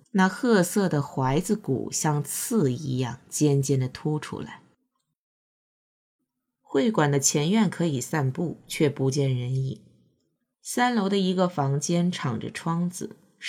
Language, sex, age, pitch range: Chinese, female, 20-39, 135-195 Hz